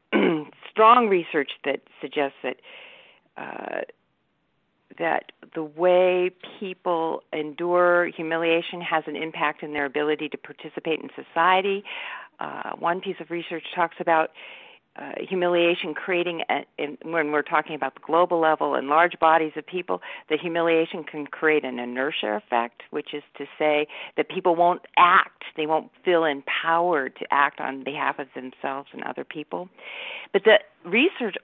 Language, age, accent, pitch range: English, 50-69, American, 150-180 Hz